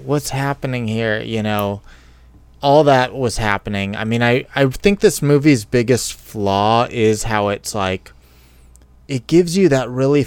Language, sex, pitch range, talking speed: English, male, 100-130 Hz, 160 wpm